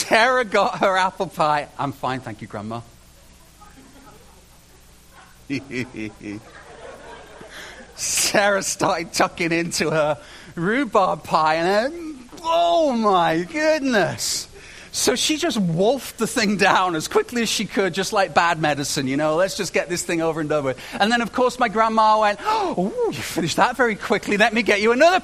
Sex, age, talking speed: male, 40-59, 155 wpm